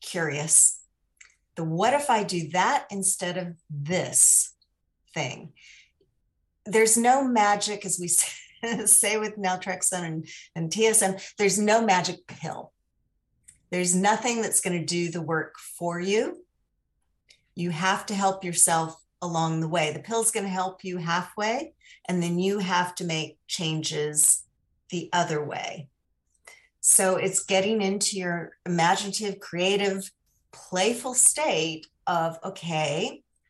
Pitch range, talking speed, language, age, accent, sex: 165-195 Hz, 130 wpm, English, 40-59, American, female